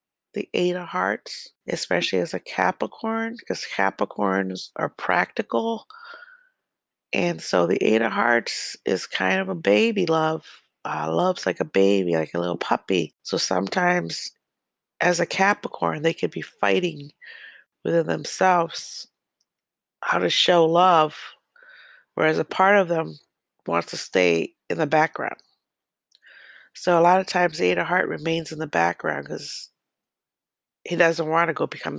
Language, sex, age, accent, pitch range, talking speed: English, female, 30-49, American, 115-190 Hz, 150 wpm